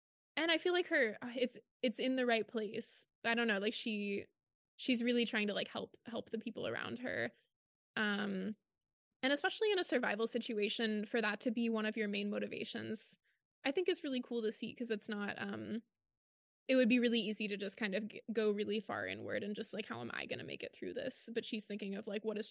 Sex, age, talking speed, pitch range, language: female, 20-39, 230 wpm, 210-245 Hz, English